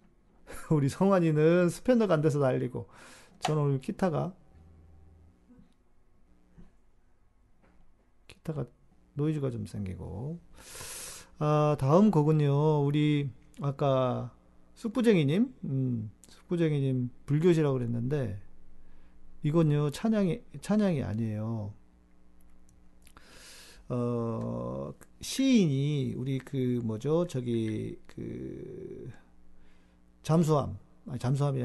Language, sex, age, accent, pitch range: Korean, male, 40-59, native, 100-155 Hz